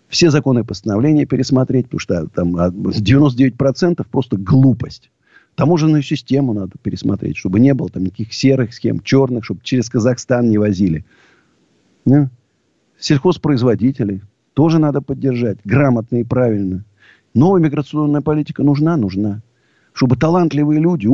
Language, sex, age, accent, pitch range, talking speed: Russian, male, 50-69, native, 105-145 Hz, 115 wpm